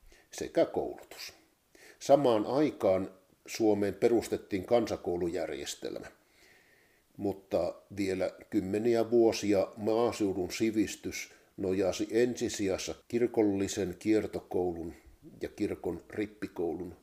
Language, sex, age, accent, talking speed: Finnish, male, 50-69, native, 70 wpm